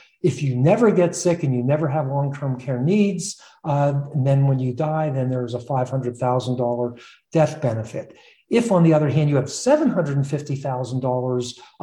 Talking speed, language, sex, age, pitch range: 160 wpm, English, male, 50-69, 130-160 Hz